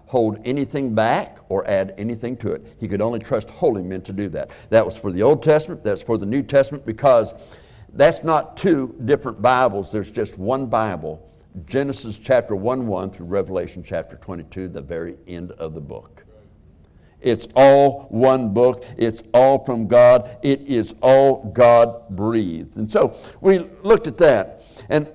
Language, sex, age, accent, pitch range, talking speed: English, male, 60-79, American, 100-135 Hz, 170 wpm